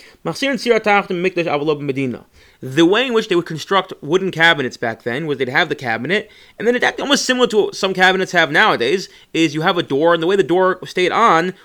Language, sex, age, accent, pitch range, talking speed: English, male, 30-49, American, 170-225 Hz, 205 wpm